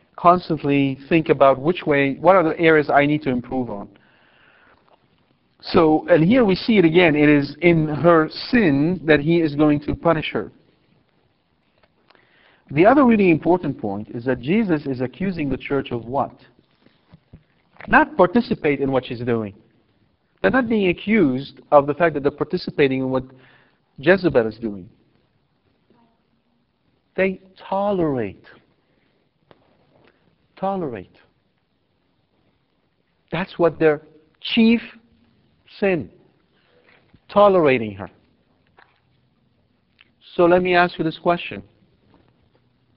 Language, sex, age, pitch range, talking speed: English, male, 50-69, 130-175 Hz, 120 wpm